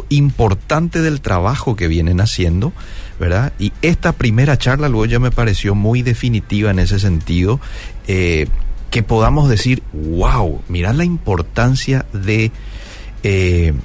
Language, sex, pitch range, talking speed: Spanish, male, 90-120 Hz, 130 wpm